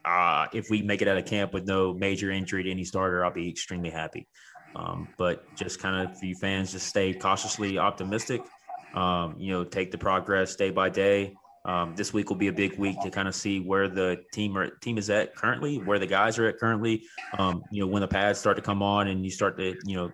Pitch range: 90-100 Hz